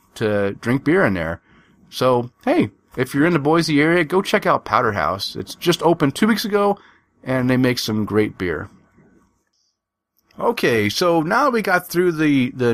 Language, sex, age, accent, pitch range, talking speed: English, male, 40-59, American, 120-165 Hz, 185 wpm